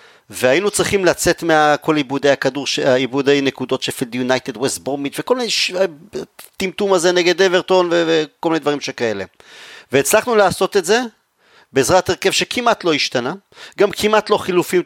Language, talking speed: Hebrew, 150 wpm